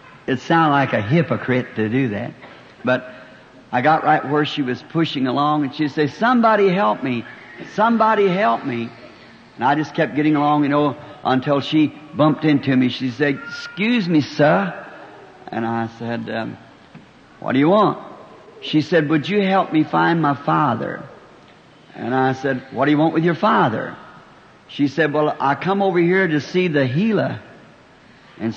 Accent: American